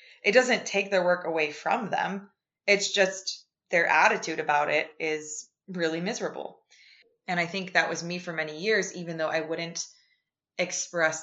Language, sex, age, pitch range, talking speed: English, female, 20-39, 160-190 Hz, 165 wpm